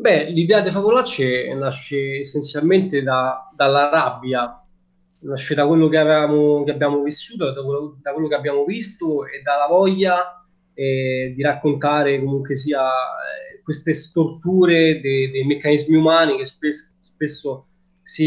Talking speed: 140 wpm